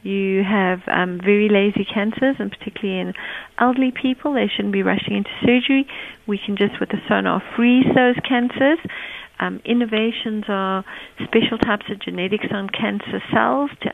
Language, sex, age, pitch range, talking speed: English, female, 40-59, 195-235 Hz, 160 wpm